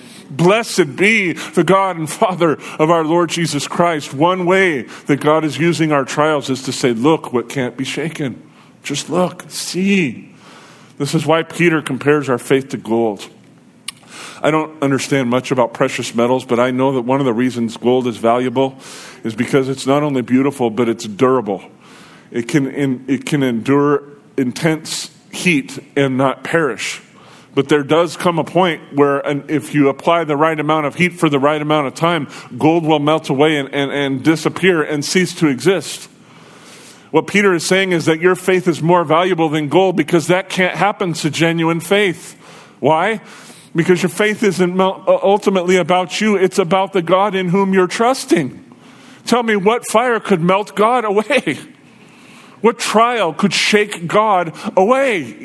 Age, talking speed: 40-59, 170 wpm